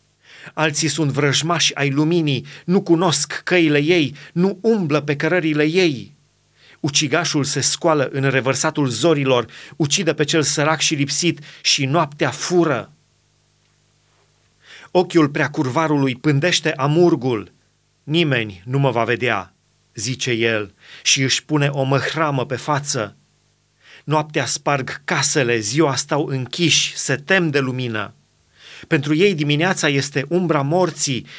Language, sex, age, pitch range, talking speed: Romanian, male, 30-49, 140-170 Hz, 120 wpm